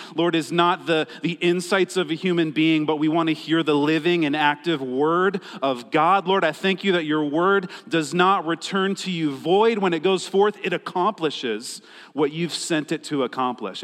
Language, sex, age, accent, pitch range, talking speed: English, male, 40-59, American, 155-190 Hz, 205 wpm